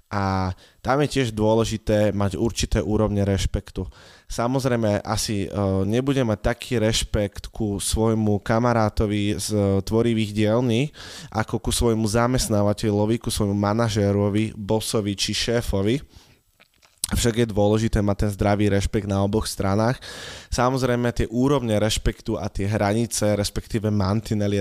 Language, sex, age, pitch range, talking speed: Slovak, male, 20-39, 100-115 Hz, 120 wpm